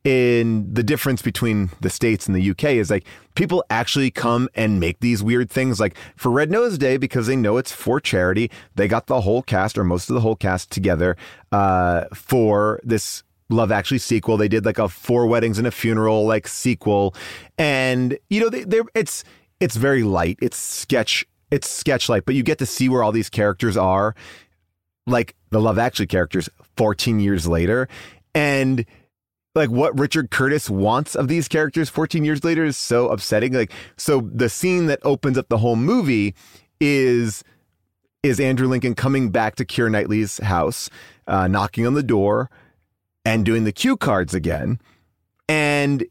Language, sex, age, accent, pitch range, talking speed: English, male, 30-49, American, 100-130 Hz, 180 wpm